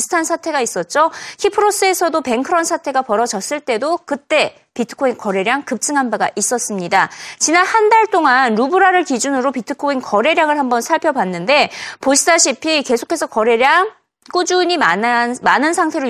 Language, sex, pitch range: Korean, female, 225-335 Hz